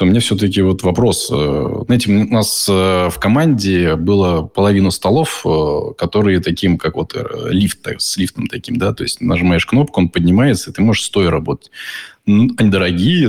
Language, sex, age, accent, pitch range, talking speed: Russian, male, 20-39, native, 90-105 Hz, 165 wpm